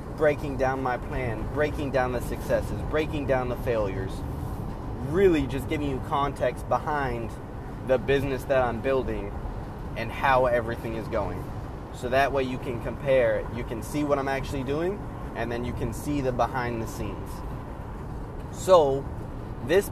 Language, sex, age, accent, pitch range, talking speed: English, male, 30-49, American, 110-135 Hz, 155 wpm